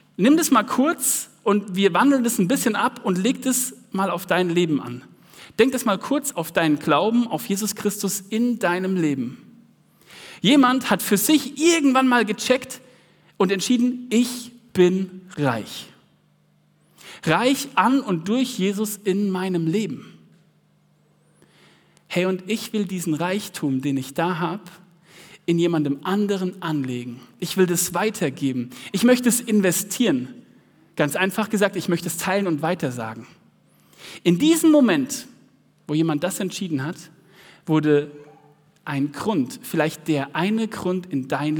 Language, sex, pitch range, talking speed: German, male, 165-230 Hz, 145 wpm